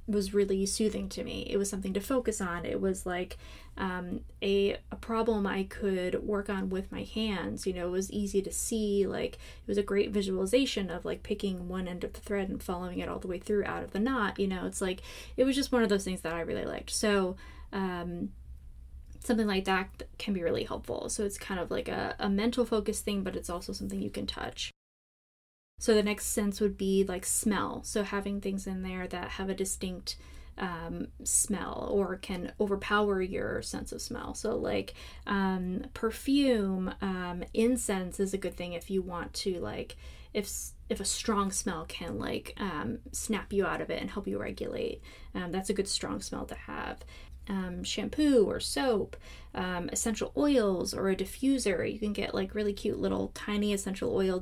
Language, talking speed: English, 205 wpm